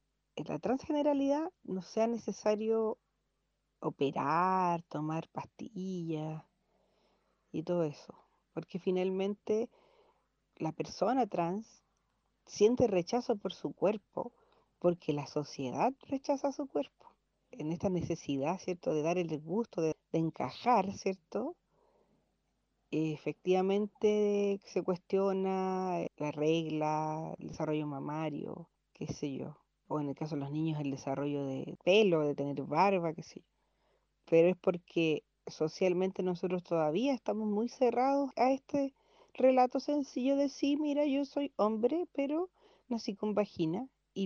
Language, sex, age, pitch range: English, female, 40-59, 160-245 Hz